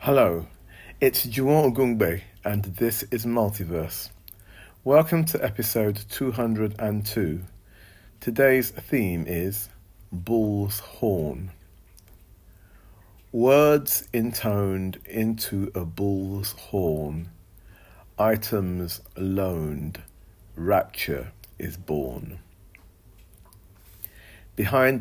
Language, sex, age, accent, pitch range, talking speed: English, male, 50-69, British, 90-110 Hz, 70 wpm